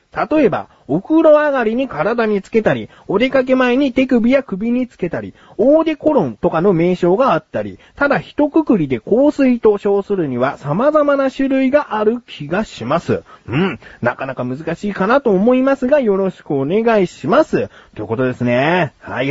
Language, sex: Japanese, male